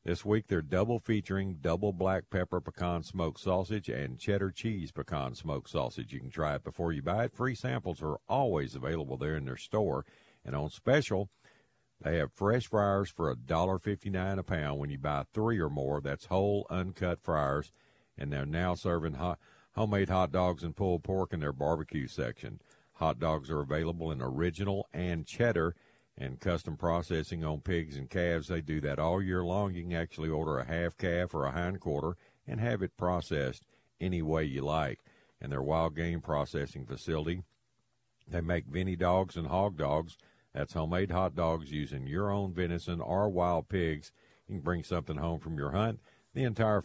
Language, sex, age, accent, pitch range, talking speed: English, male, 50-69, American, 80-95 Hz, 180 wpm